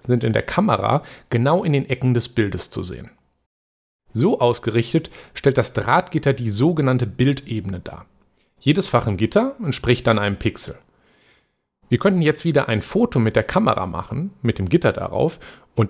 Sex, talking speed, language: male, 165 wpm, German